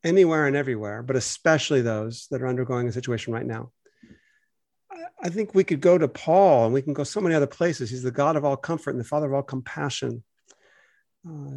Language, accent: English, American